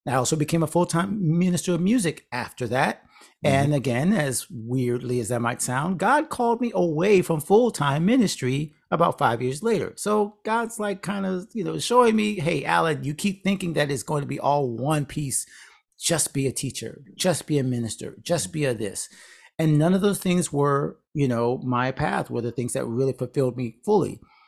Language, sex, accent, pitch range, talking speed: English, male, American, 125-175 Hz, 200 wpm